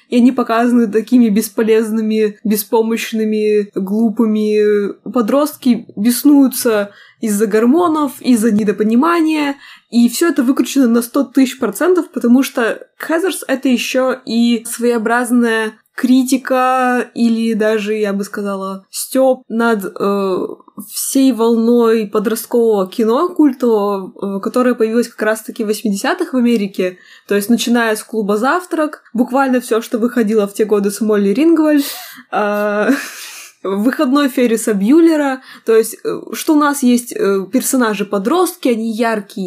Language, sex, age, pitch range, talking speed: Russian, female, 20-39, 215-270 Hz, 120 wpm